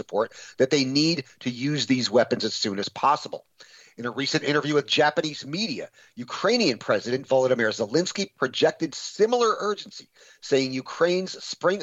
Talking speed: 145 wpm